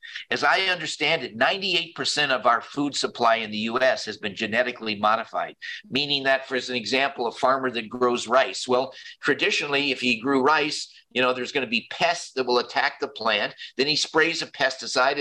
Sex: male